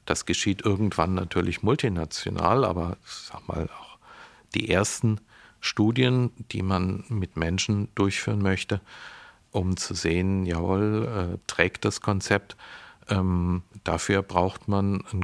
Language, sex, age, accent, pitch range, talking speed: German, male, 50-69, German, 95-115 Hz, 120 wpm